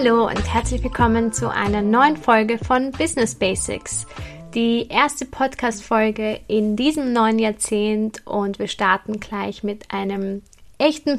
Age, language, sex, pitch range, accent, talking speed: 20-39, German, female, 205-240 Hz, German, 135 wpm